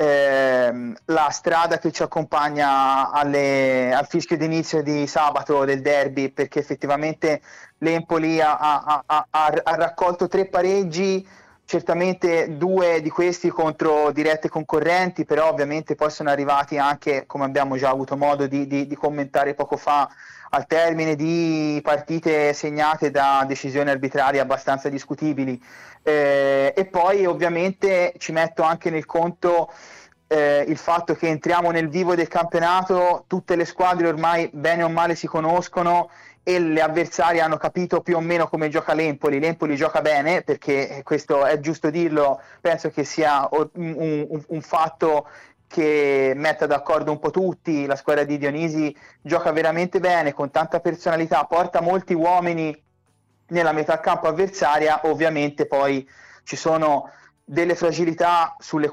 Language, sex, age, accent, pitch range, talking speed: Italian, male, 30-49, native, 145-170 Hz, 145 wpm